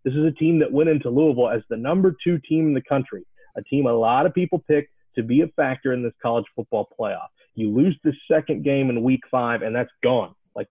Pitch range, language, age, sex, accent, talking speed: 120-160 Hz, English, 30-49, male, American, 245 wpm